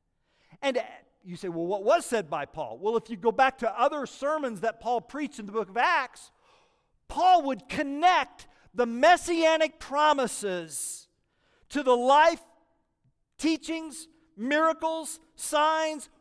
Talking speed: 135 wpm